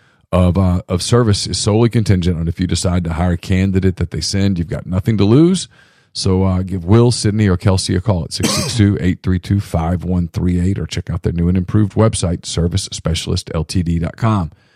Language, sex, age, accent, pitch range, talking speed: English, male, 40-59, American, 90-110 Hz, 170 wpm